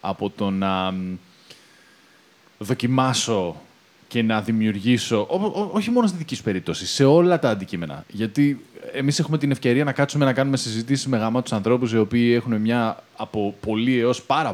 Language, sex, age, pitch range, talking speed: Greek, male, 20-39, 115-155 Hz, 165 wpm